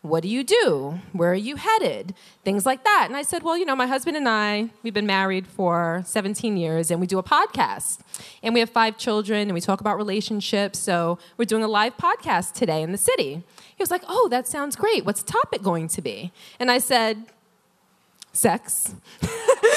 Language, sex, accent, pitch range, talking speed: English, female, American, 195-280 Hz, 210 wpm